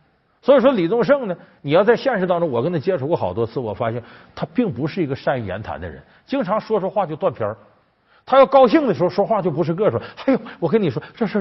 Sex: male